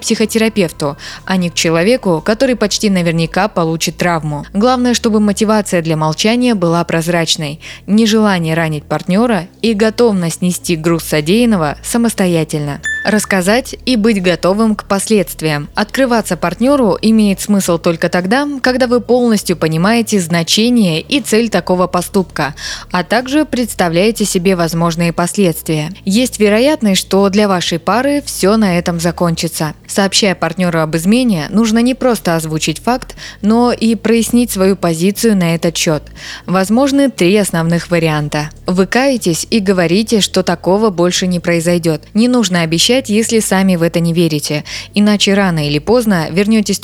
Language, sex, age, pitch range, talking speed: Russian, female, 20-39, 170-225 Hz, 135 wpm